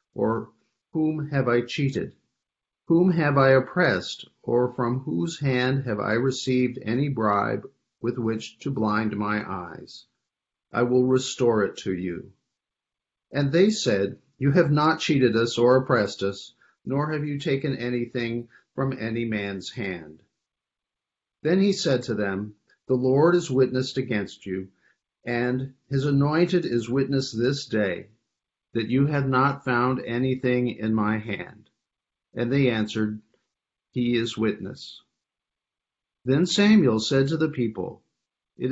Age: 50-69